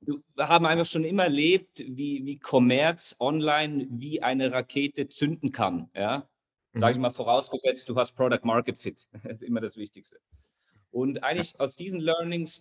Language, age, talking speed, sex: English, 40-59, 160 wpm, male